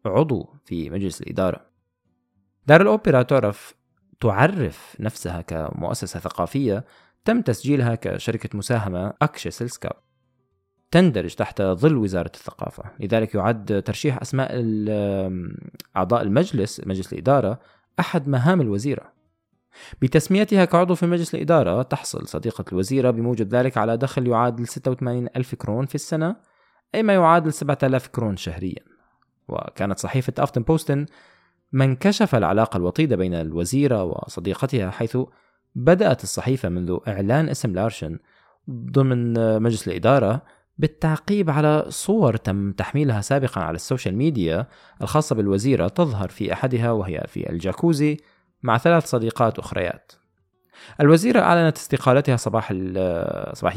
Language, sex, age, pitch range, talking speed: Arabic, male, 20-39, 100-145 Hz, 115 wpm